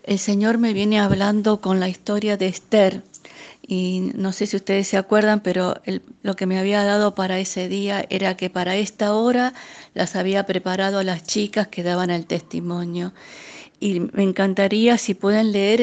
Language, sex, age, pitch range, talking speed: Spanish, female, 50-69, 190-215 Hz, 180 wpm